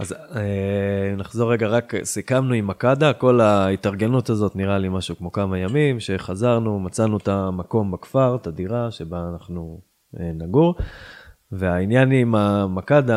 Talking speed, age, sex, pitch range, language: 130 wpm, 20-39, male, 95-125 Hz, Hebrew